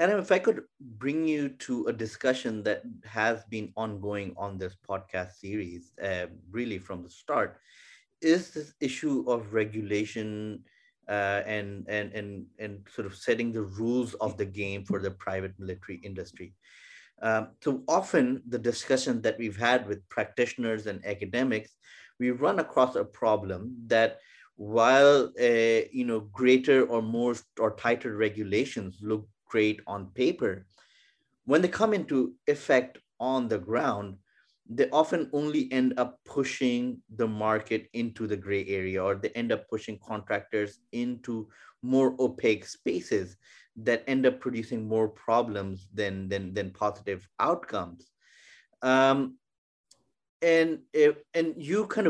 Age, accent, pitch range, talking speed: 30-49, Indian, 100-125 Hz, 145 wpm